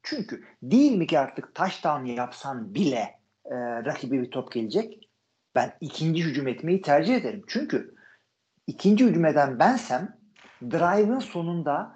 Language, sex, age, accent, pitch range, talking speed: Turkish, male, 50-69, native, 155-210 Hz, 130 wpm